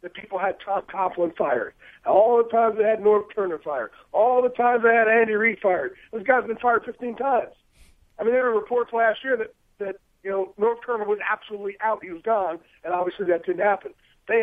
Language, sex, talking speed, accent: English, male, 225 wpm, American